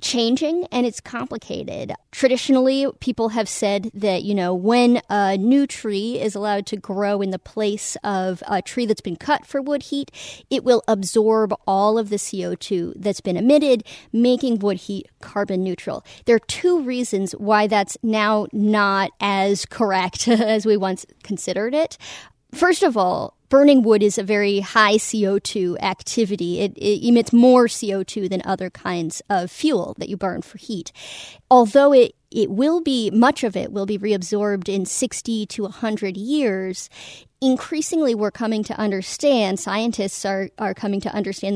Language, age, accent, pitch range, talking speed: English, 40-59, American, 195-245 Hz, 165 wpm